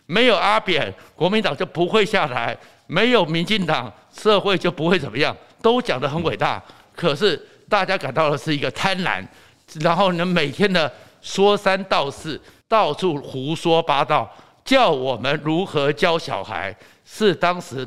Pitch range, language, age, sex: 140-190 Hz, Chinese, 60-79, male